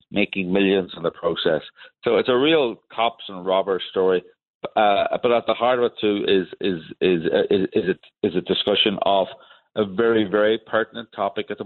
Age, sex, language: 50-69, male, English